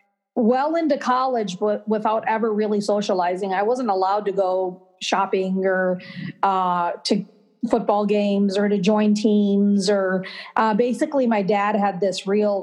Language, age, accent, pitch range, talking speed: English, 40-59, American, 200-240 Hz, 145 wpm